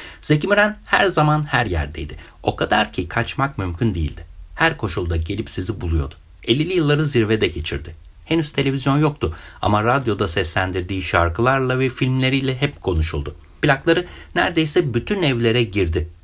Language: Turkish